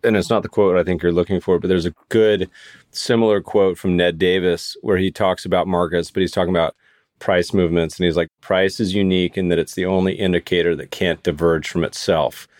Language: English